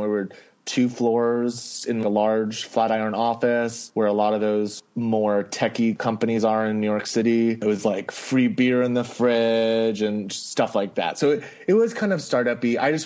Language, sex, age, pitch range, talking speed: English, male, 20-39, 110-130 Hz, 205 wpm